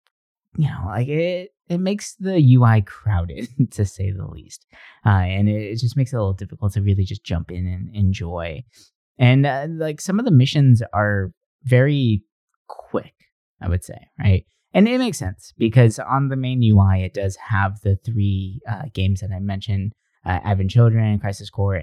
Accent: American